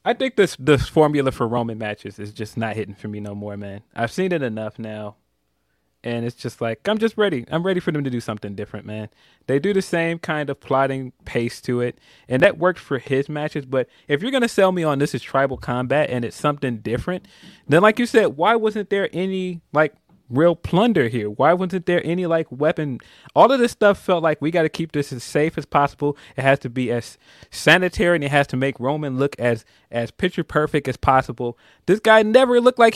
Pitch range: 120-180 Hz